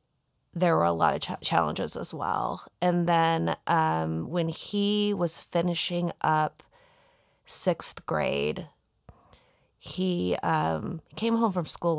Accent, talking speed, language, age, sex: American, 115 wpm, English, 30-49, female